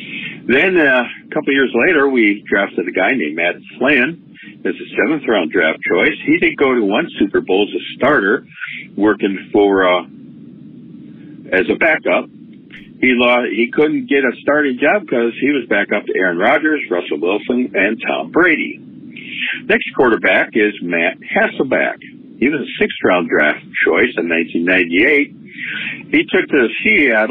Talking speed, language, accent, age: 150 wpm, English, American, 60-79